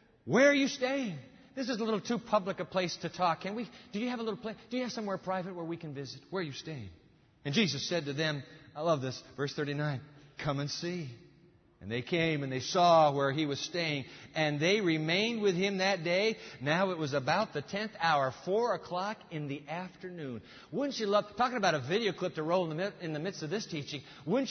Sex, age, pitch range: male, 50-69, 135-195 Hz